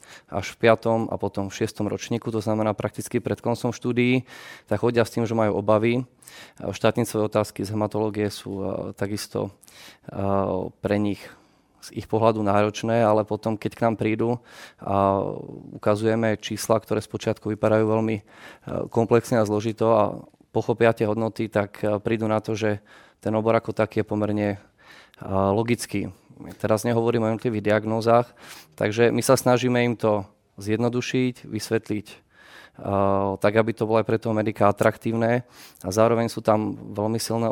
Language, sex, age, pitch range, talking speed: Czech, male, 20-39, 105-115 Hz, 145 wpm